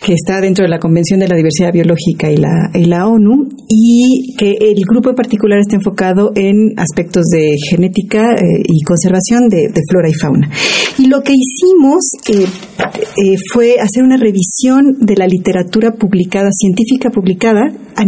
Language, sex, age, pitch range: Spanish, female, 40-59, 185-230 Hz